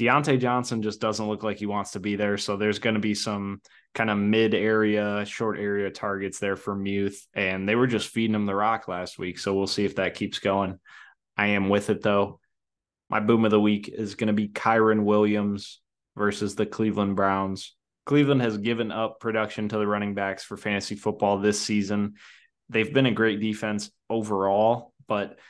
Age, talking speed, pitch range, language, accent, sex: 20-39, 200 wpm, 100-110 Hz, English, American, male